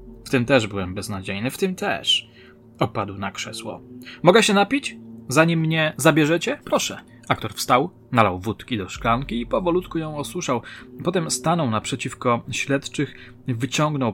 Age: 20-39